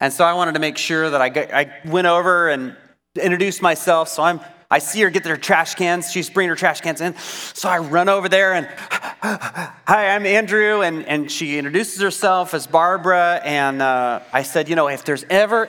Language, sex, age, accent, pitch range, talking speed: English, male, 30-49, American, 140-180 Hz, 215 wpm